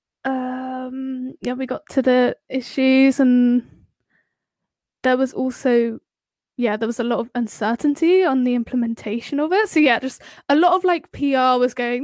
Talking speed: 165 wpm